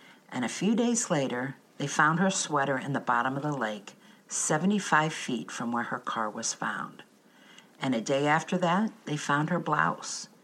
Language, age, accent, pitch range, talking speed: English, 50-69, American, 135-195 Hz, 185 wpm